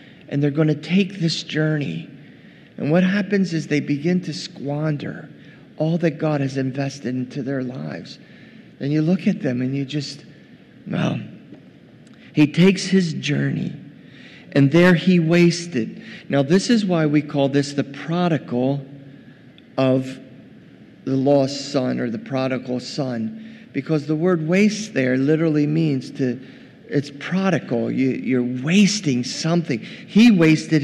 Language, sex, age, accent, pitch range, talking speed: English, male, 50-69, American, 155-215 Hz, 140 wpm